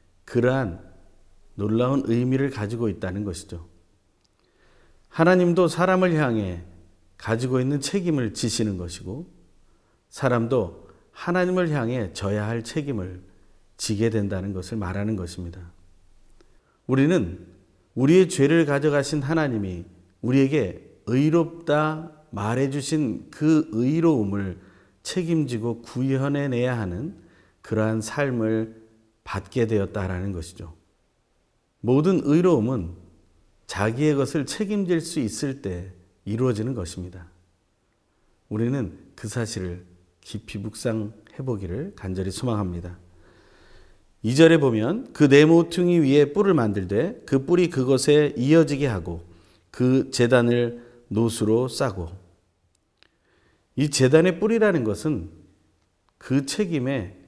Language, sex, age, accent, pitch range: Korean, male, 40-59, native, 90-140 Hz